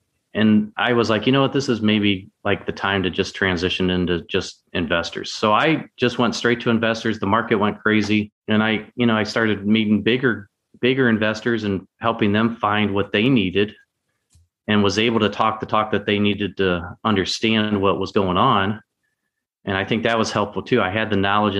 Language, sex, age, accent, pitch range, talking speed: English, male, 30-49, American, 95-115 Hz, 205 wpm